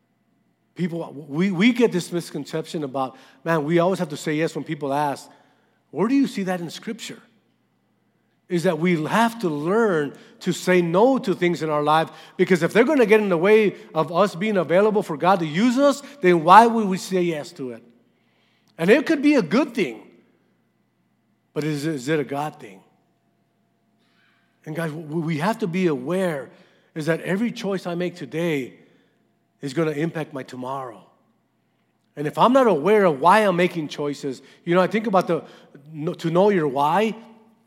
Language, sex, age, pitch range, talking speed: English, male, 50-69, 150-200 Hz, 190 wpm